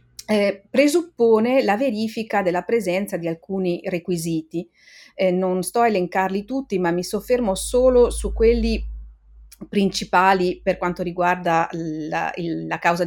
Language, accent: Italian, native